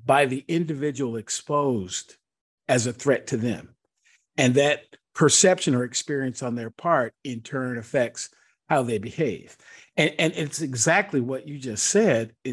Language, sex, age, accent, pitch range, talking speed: English, male, 50-69, American, 135-185 Hz, 150 wpm